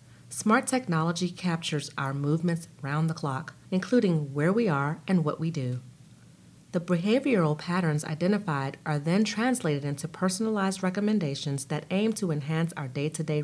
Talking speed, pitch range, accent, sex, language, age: 145 wpm, 145-180 Hz, American, female, English, 40-59